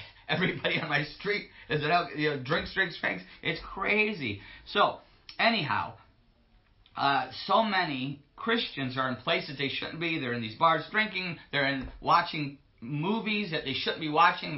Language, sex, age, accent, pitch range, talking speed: English, male, 40-59, American, 135-185 Hz, 160 wpm